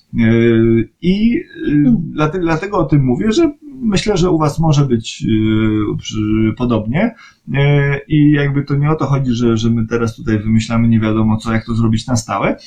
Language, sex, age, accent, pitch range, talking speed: Polish, male, 30-49, native, 115-165 Hz, 155 wpm